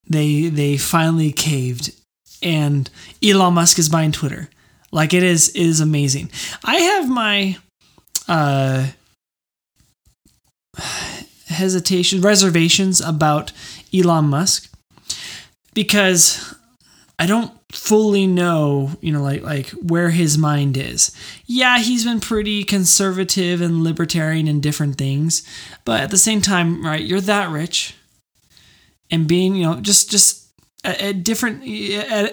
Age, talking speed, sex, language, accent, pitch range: 20-39, 125 wpm, male, English, American, 150-190 Hz